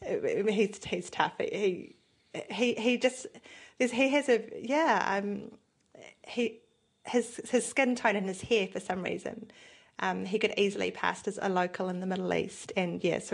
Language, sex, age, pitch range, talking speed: English, female, 30-49, 185-240 Hz, 175 wpm